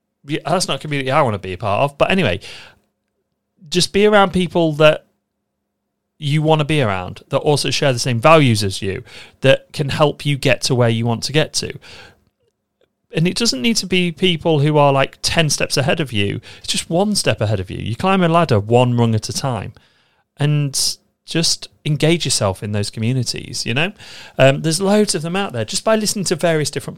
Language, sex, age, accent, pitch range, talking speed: English, male, 30-49, British, 110-150 Hz, 215 wpm